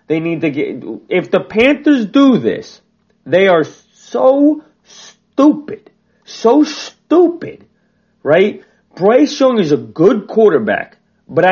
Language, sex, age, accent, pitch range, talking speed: English, male, 30-49, American, 145-210 Hz, 120 wpm